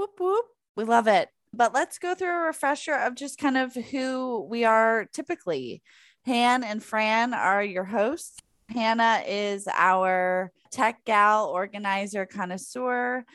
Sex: female